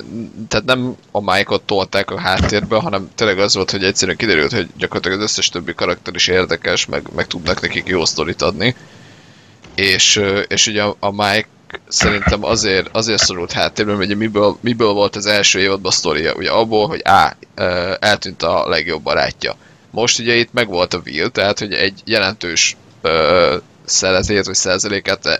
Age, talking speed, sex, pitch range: 20-39, 160 wpm, male, 95-110 Hz